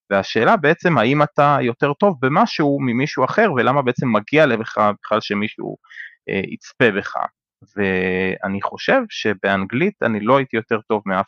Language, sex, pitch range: Hebrew, male, 100-135 Hz